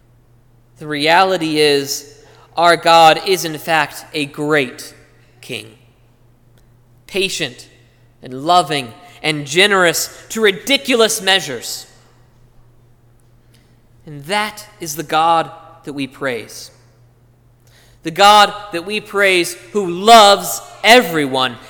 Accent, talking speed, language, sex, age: American, 95 wpm, English, male, 20-39